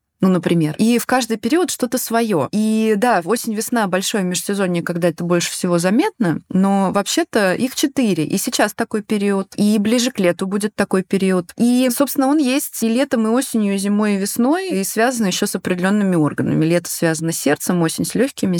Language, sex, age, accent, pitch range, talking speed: Russian, female, 20-39, native, 180-235 Hz, 185 wpm